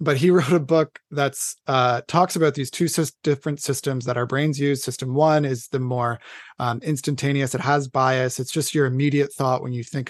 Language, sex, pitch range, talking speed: English, male, 120-145 Hz, 210 wpm